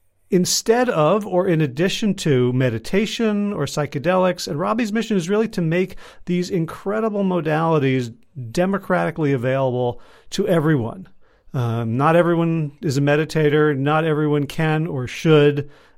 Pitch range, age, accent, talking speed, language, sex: 140-180 Hz, 40-59, American, 130 wpm, English, male